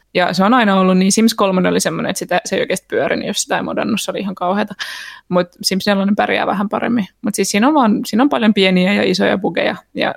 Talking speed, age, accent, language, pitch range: 235 wpm, 20-39, native, Finnish, 190-225 Hz